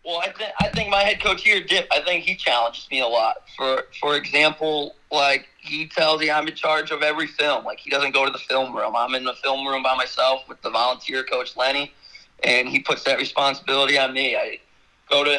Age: 30-49